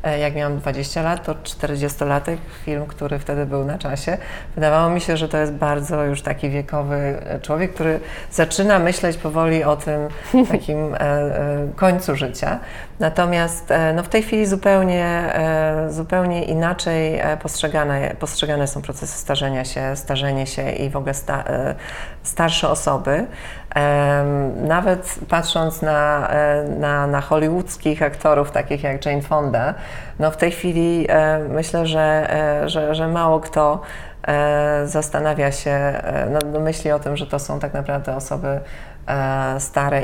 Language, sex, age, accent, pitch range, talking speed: Polish, female, 30-49, native, 145-165 Hz, 130 wpm